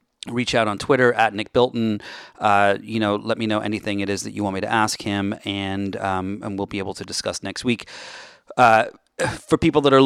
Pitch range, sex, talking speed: 100-120 Hz, male, 225 wpm